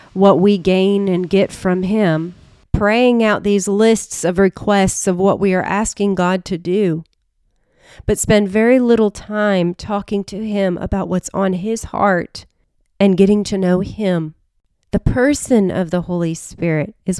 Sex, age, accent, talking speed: female, 30-49, American, 160 wpm